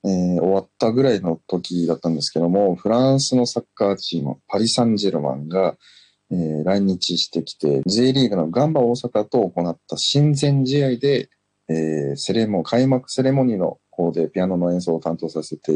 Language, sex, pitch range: Japanese, male, 85-125 Hz